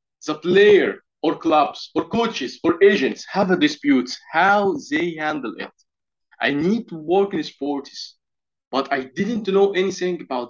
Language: English